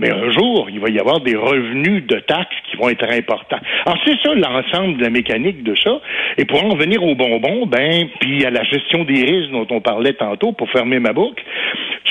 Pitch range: 125-195 Hz